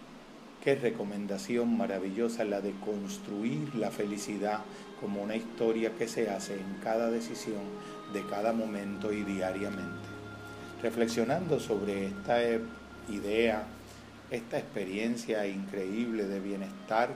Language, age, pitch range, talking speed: Spanish, 40-59, 100-120 Hz, 110 wpm